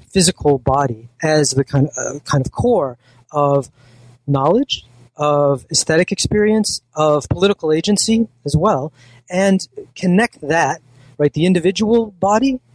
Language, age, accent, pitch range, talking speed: English, 30-49, American, 130-165 Hz, 125 wpm